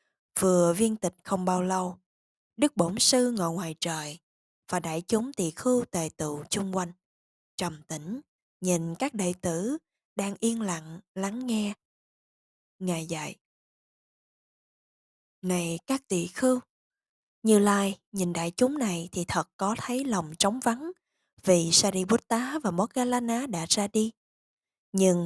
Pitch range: 180-235 Hz